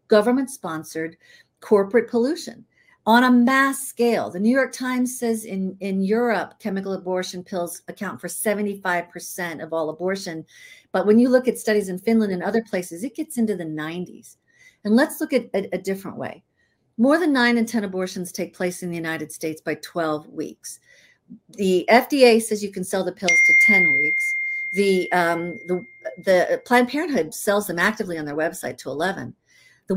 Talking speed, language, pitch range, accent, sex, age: 180 wpm, English, 180-240 Hz, American, female, 50-69